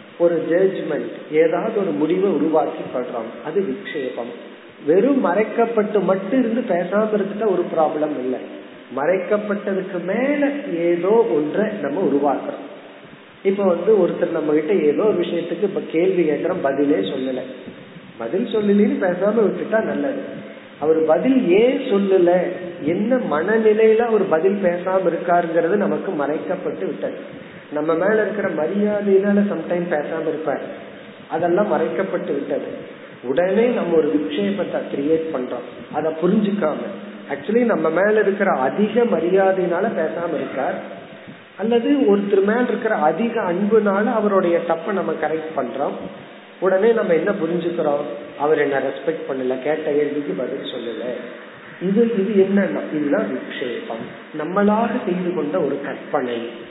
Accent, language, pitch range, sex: native, Tamil, 155-210 Hz, male